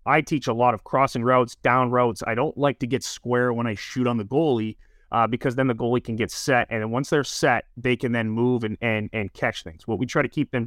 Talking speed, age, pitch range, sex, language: 275 wpm, 30-49, 110-130 Hz, male, English